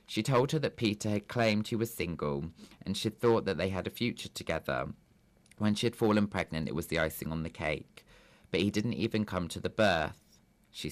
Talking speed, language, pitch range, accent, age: 220 wpm, English, 85-115 Hz, British, 20-39